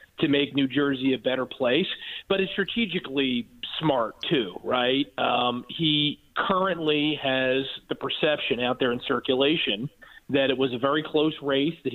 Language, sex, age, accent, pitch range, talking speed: English, male, 40-59, American, 130-165 Hz, 155 wpm